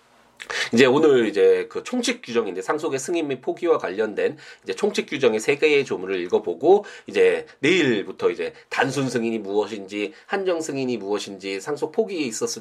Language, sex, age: Korean, male, 30-49